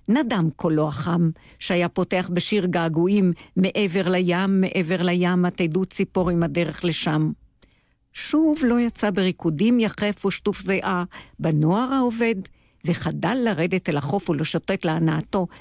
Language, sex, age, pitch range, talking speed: Hebrew, female, 50-69, 170-240 Hz, 115 wpm